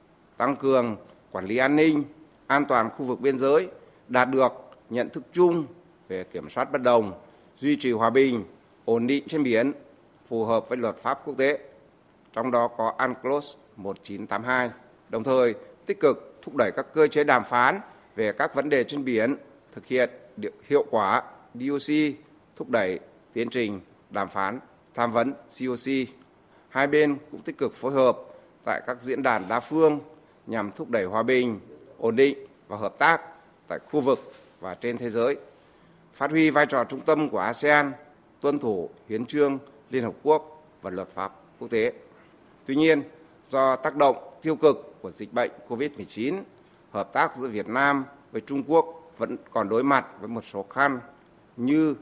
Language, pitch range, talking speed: Vietnamese, 120-150 Hz, 175 wpm